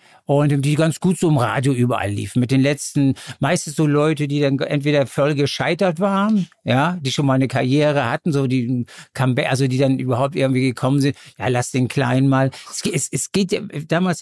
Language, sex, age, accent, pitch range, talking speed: German, male, 60-79, German, 130-160 Hz, 205 wpm